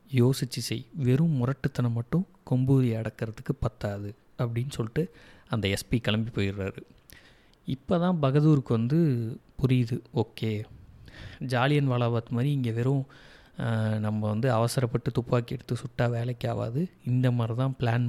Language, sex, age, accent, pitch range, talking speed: Tamil, male, 30-49, native, 110-130 Hz, 125 wpm